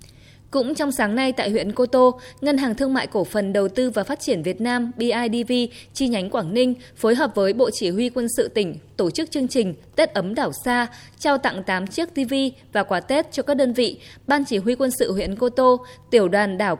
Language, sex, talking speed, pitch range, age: Vietnamese, female, 235 wpm, 195-255 Hz, 20-39